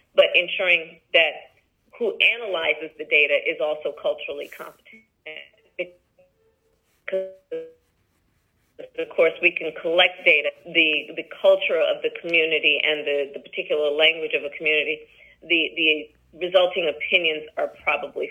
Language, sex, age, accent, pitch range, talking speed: English, female, 40-59, American, 170-220 Hz, 125 wpm